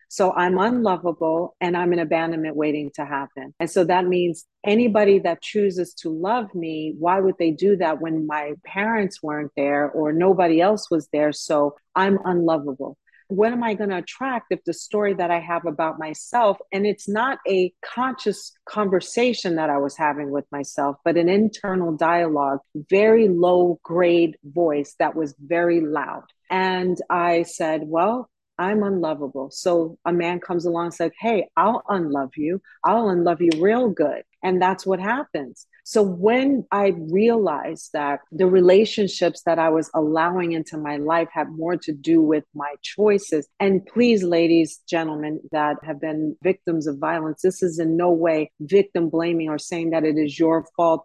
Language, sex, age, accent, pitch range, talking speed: English, female, 40-59, American, 155-195 Hz, 175 wpm